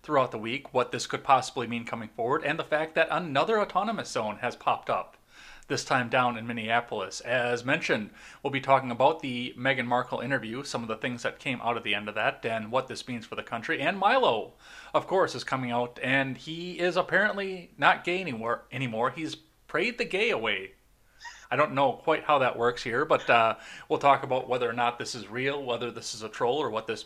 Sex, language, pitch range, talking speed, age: male, English, 120-170 Hz, 220 wpm, 30-49